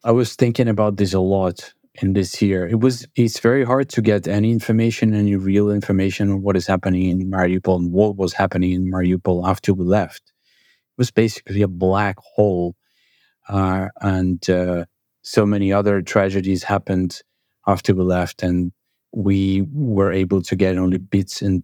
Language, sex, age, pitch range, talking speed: English, male, 30-49, 95-120 Hz, 175 wpm